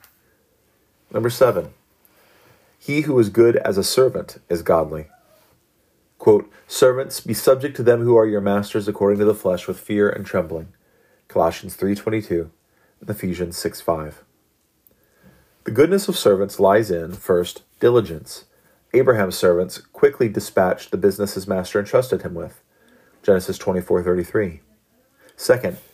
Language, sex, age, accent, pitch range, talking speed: English, male, 40-59, American, 100-150 Hz, 140 wpm